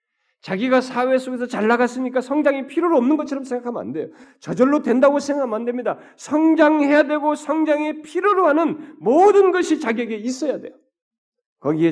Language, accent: Korean, native